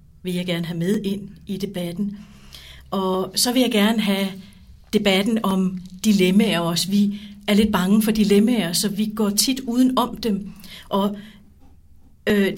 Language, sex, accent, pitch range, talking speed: Danish, female, native, 195-220 Hz, 160 wpm